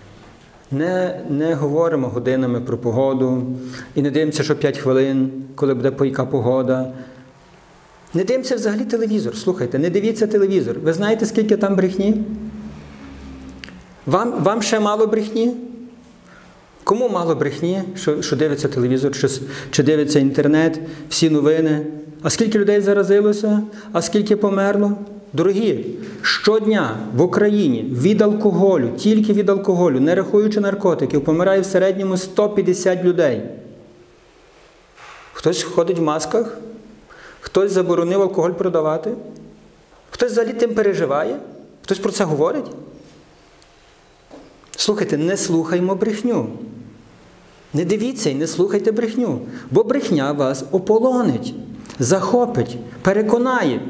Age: 50-69